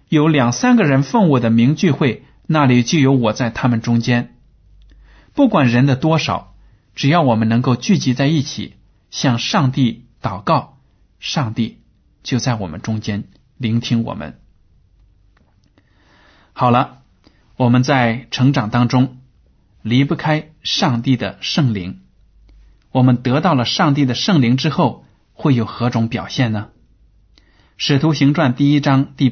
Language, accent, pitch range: Chinese, native, 105-140 Hz